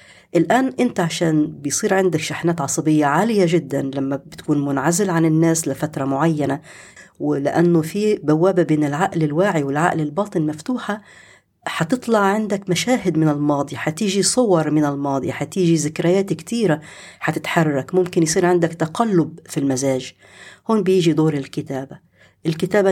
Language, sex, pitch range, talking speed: Arabic, female, 150-195 Hz, 130 wpm